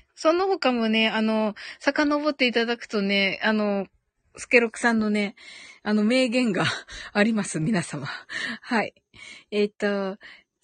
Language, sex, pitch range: Japanese, female, 210-305 Hz